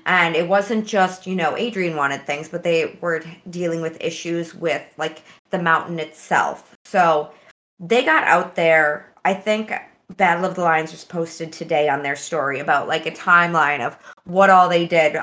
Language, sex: English, female